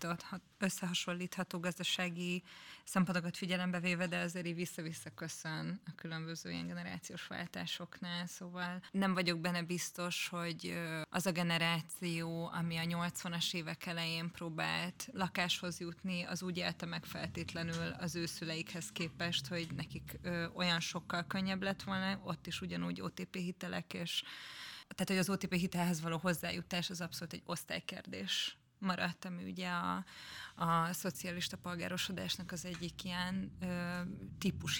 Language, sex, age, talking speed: Hungarian, female, 20-39, 130 wpm